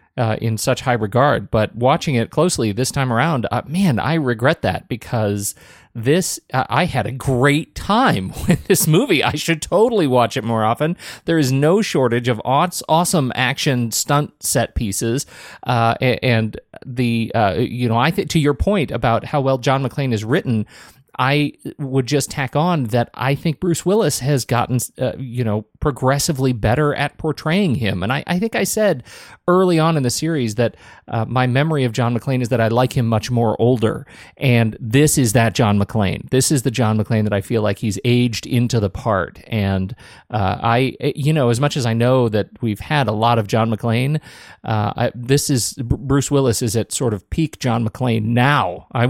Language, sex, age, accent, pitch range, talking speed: English, male, 40-59, American, 115-145 Hz, 195 wpm